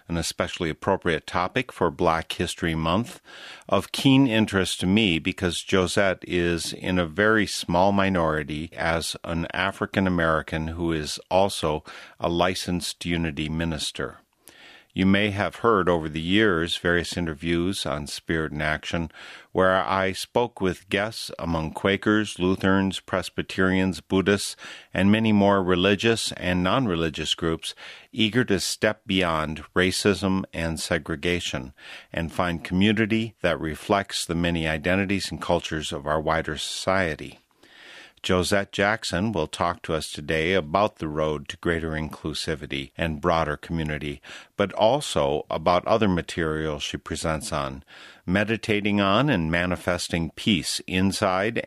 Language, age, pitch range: English, 50-69, 80-95 Hz